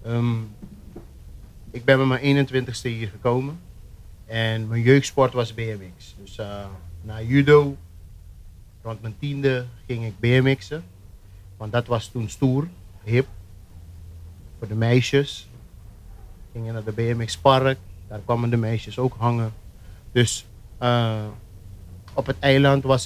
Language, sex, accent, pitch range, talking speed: Dutch, male, Dutch, 95-125 Hz, 130 wpm